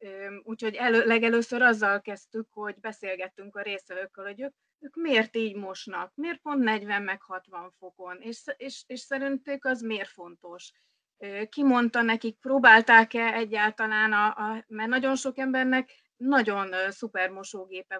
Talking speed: 135 wpm